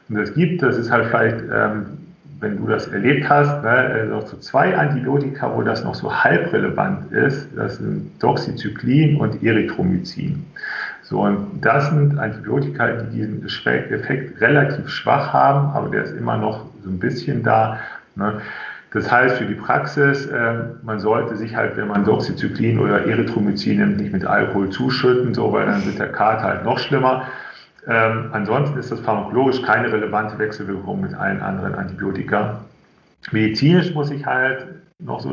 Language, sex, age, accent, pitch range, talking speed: German, male, 40-59, German, 110-135 Hz, 160 wpm